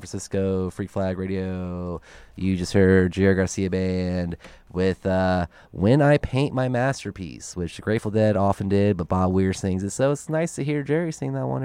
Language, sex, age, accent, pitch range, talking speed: Spanish, male, 20-39, American, 95-120 Hz, 190 wpm